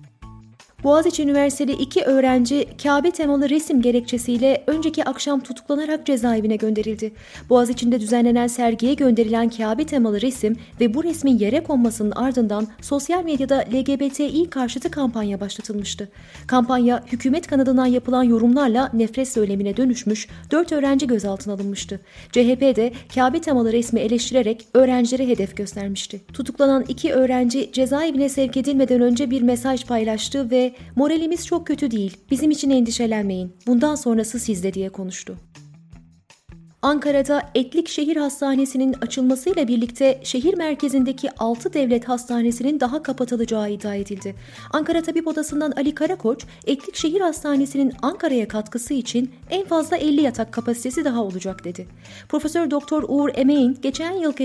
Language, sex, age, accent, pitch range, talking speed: Turkish, female, 30-49, native, 225-280 Hz, 125 wpm